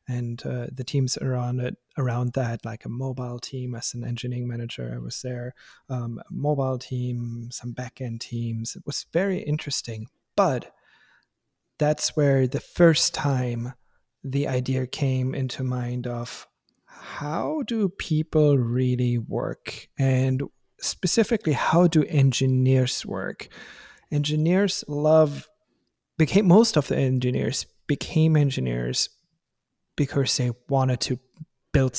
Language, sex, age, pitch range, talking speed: English, male, 30-49, 125-150 Hz, 125 wpm